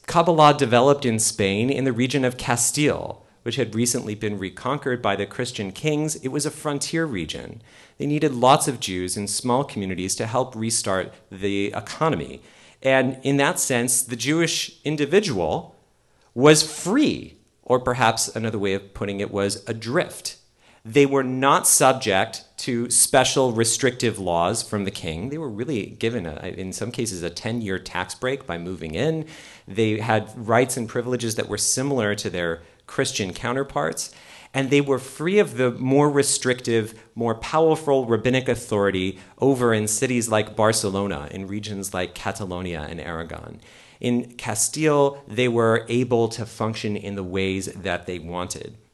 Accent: American